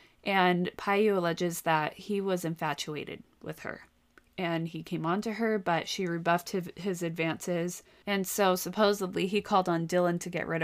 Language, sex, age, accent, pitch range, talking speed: English, female, 20-39, American, 170-215 Hz, 175 wpm